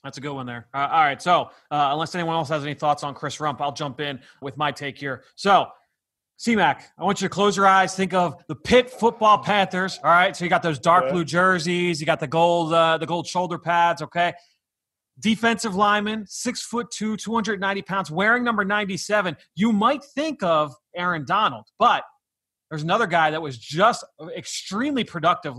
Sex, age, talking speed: male, 30-49, 205 wpm